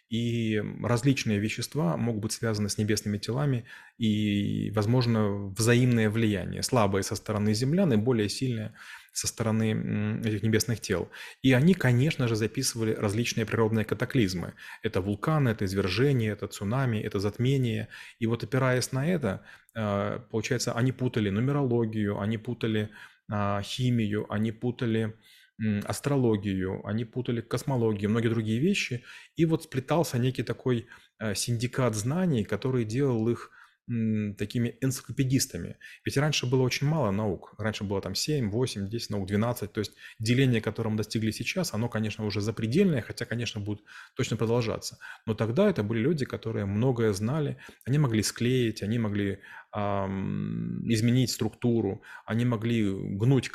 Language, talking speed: Russian, 135 wpm